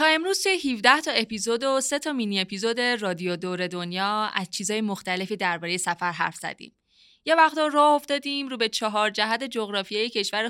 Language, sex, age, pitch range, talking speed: Persian, female, 20-39, 195-245 Hz, 170 wpm